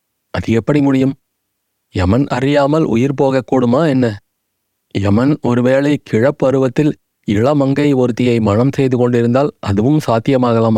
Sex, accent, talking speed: male, native, 105 wpm